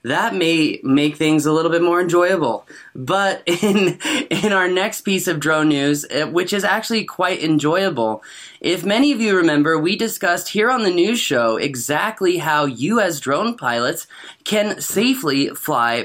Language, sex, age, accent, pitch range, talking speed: English, male, 20-39, American, 150-215 Hz, 160 wpm